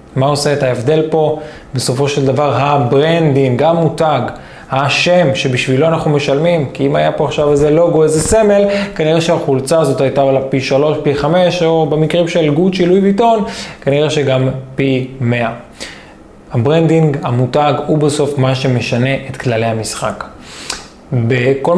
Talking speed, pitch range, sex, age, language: 145 wpm, 135-165 Hz, male, 20-39, Hebrew